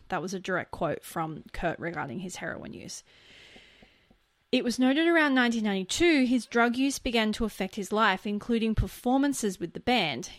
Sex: female